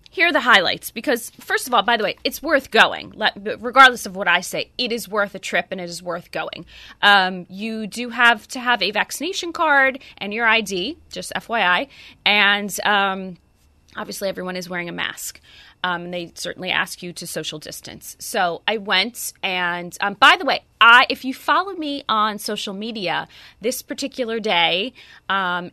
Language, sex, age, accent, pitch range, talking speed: English, female, 20-39, American, 185-255 Hz, 190 wpm